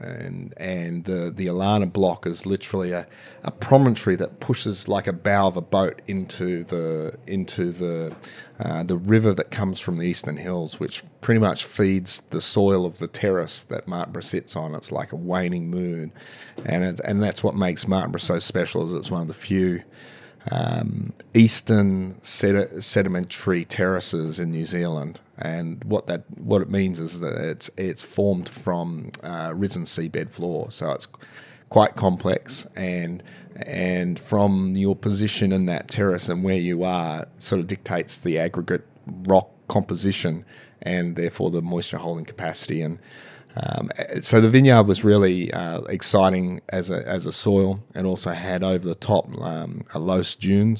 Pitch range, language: 85-100 Hz, English